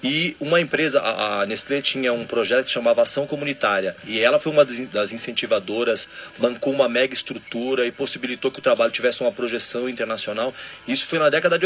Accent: Brazilian